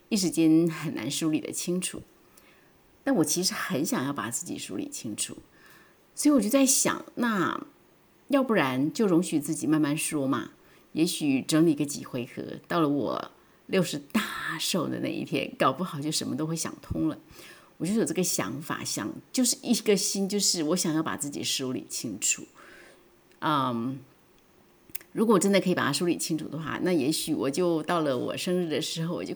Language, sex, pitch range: Chinese, female, 150-200 Hz